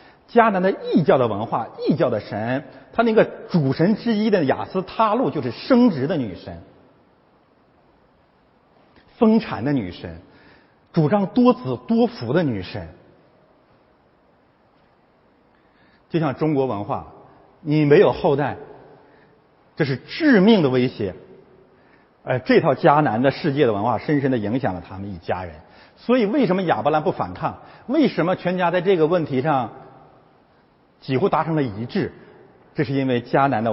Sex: male